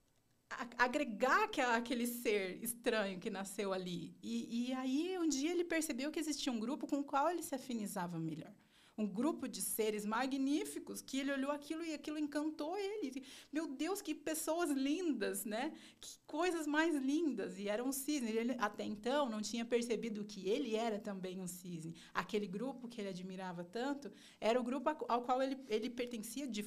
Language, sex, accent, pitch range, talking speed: Portuguese, female, Brazilian, 195-260 Hz, 180 wpm